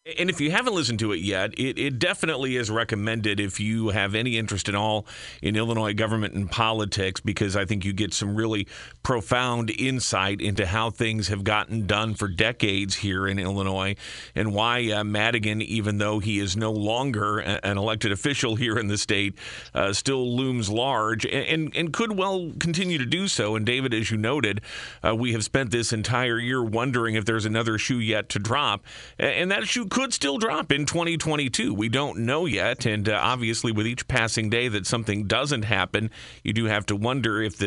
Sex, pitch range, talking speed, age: male, 105-120 Hz, 195 wpm, 40-59